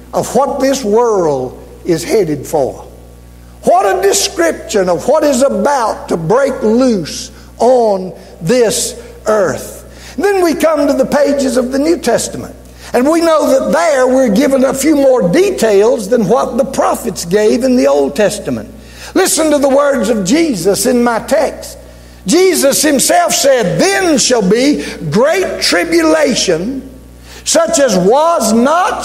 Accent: American